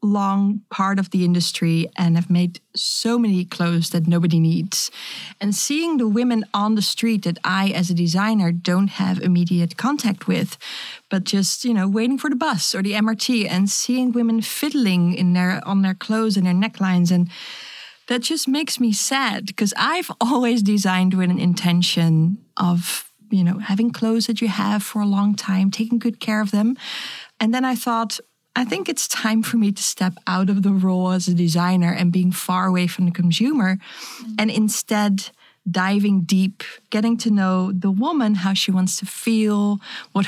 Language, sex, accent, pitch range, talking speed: English, female, Dutch, 180-215 Hz, 185 wpm